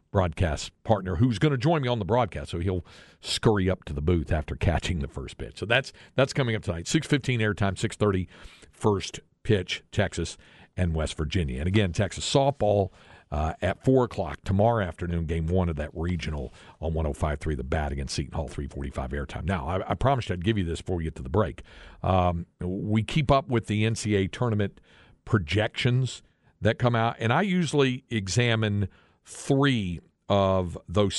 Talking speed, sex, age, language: 180 wpm, male, 50-69, English